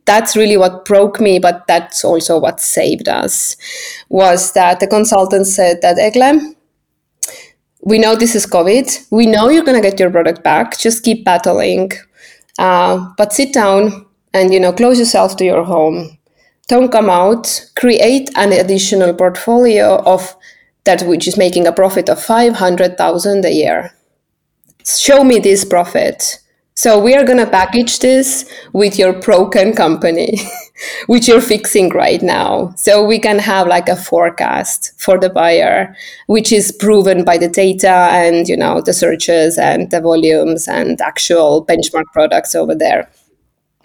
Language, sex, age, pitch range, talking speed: English, female, 20-39, 180-230 Hz, 160 wpm